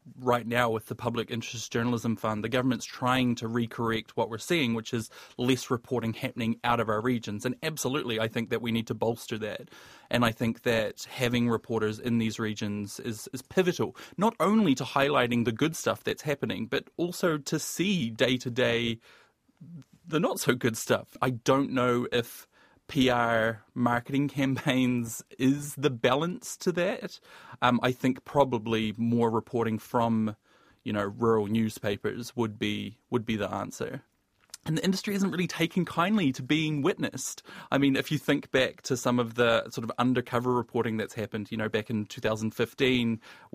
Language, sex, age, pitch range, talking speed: English, male, 30-49, 115-135 Hz, 175 wpm